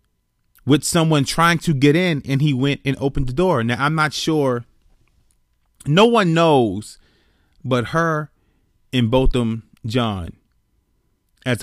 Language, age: English, 30-49